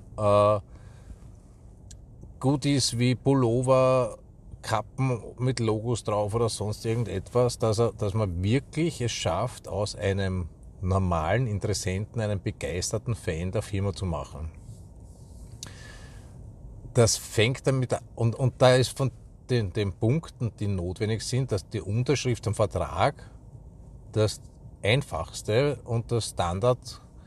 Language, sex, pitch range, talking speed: German, male, 100-125 Hz, 120 wpm